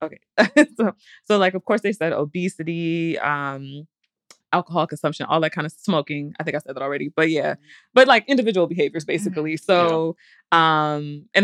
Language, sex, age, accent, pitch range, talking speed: English, female, 20-39, American, 140-170 Hz, 175 wpm